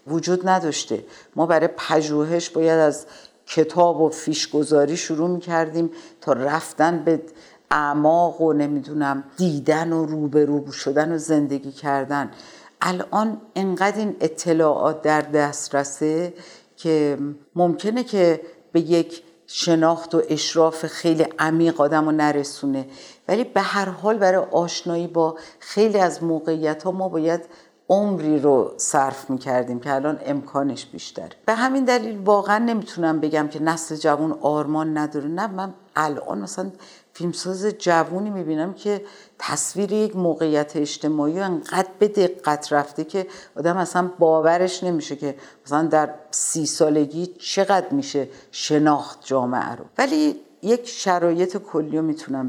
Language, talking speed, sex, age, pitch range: Persian, 130 wpm, female, 60-79, 150-185 Hz